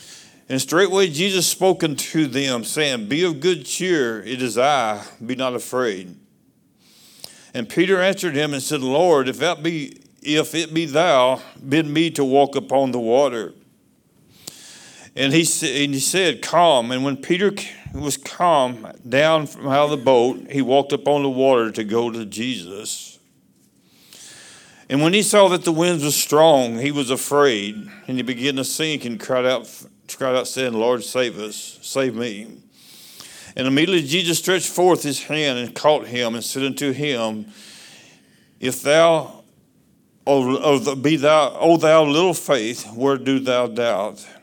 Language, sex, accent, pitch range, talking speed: English, male, American, 125-155 Hz, 160 wpm